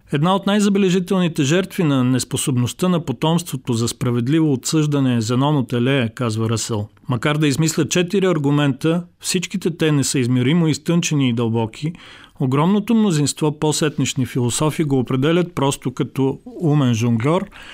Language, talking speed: Bulgarian, 135 wpm